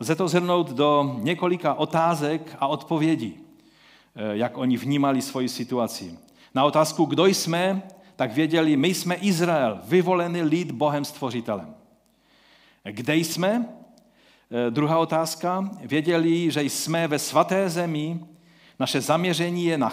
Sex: male